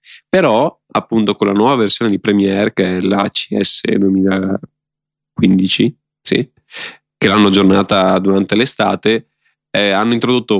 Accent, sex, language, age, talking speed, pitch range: native, male, Italian, 20-39, 125 wpm, 95-110 Hz